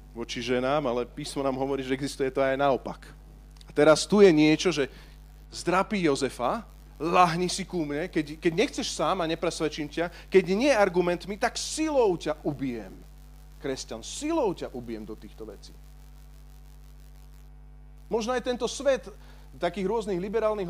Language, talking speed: Slovak, 150 wpm